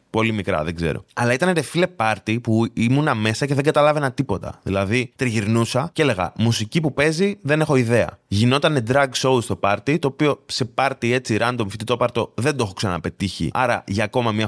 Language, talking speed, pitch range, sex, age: Greek, 185 wpm, 100-140 Hz, male, 20-39